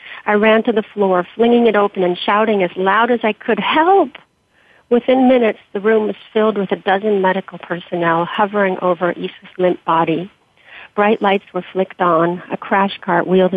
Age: 50-69